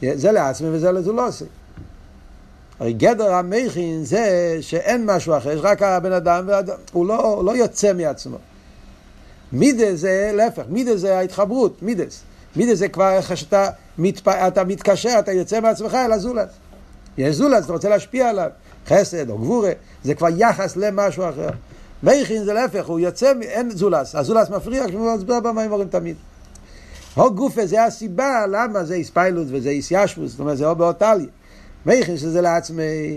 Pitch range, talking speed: 120-200 Hz, 150 wpm